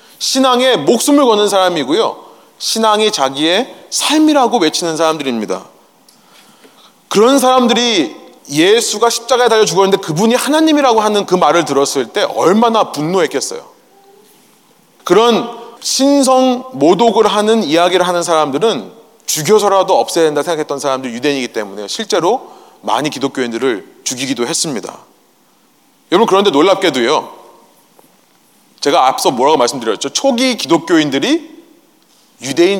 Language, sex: Korean, male